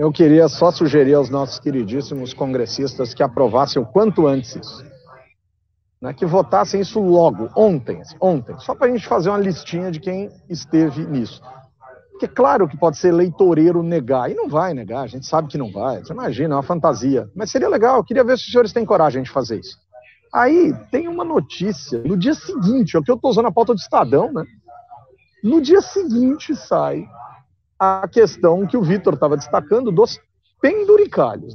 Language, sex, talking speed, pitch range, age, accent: Portuguese, male, 190 wpm, 145-235 Hz, 50-69, Brazilian